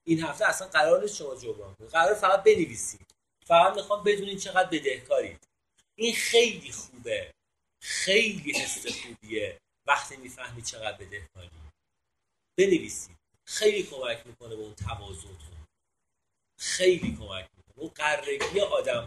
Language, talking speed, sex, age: Persian, 125 wpm, male, 40-59